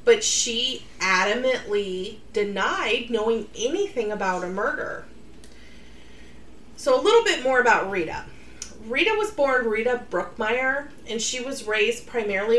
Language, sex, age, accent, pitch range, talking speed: English, female, 30-49, American, 200-250 Hz, 125 wpm